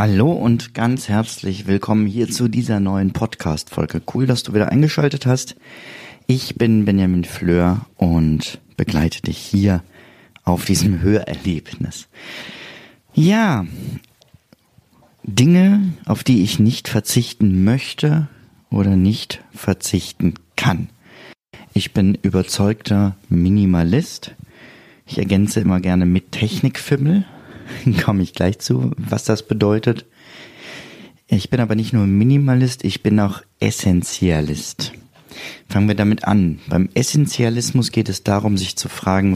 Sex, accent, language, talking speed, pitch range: male, German, German, 120 wpm, 95-125 Hz